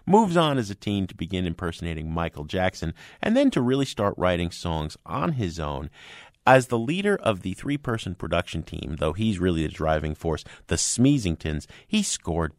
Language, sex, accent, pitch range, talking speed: English, male, American, 85-120 Hz, 180 wpm